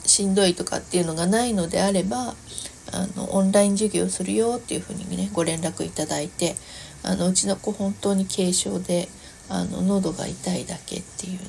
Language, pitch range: Japanese, 160-200 Hz